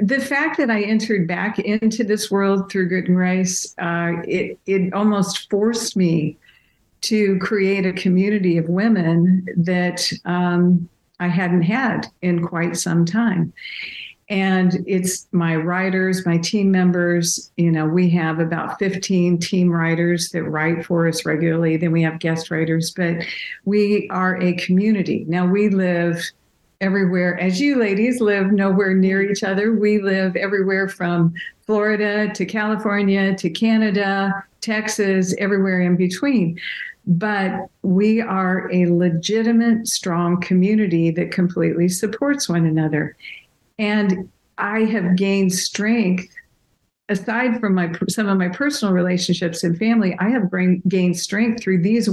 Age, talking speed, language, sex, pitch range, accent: 60-79, 140 wpm, English, female, 175-205 Hz, American